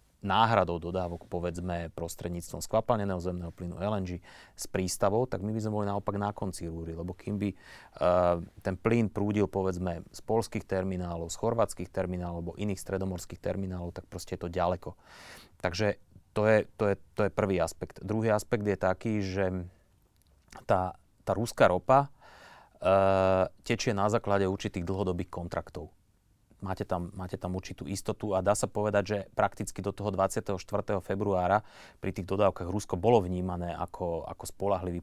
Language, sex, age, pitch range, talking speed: Slovak, male, 30-49, 90-105 Hz, 155 wpm